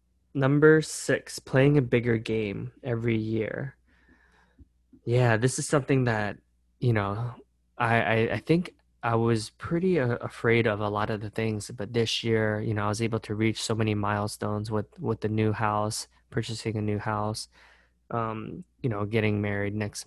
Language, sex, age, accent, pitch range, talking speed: English, male, 20-39, American, 105-120 Hz, 170 wpm